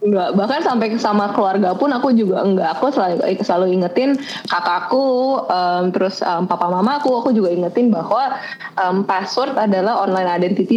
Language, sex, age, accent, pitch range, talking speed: Indonesian, female, 20-39, native, 175-220 Hz, 160 wpm